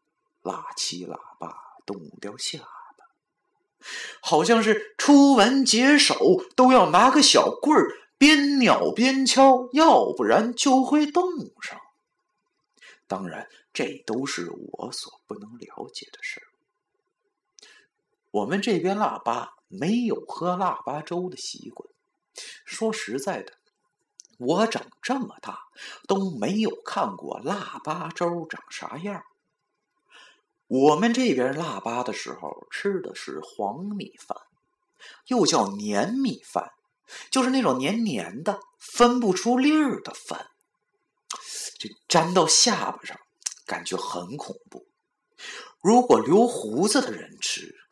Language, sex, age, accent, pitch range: Chinese, male, 50-69, native, 210-305 Hz